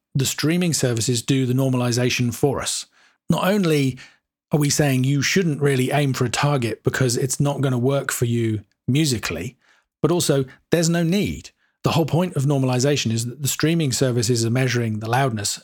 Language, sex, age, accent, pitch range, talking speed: English, male, 40-59, British, 125-145 Hz, 185 wpm